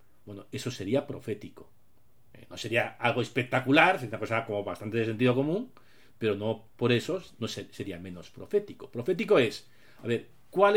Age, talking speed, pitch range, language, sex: 40-59, 160 wpm, 105-180 Hz, Spanish, male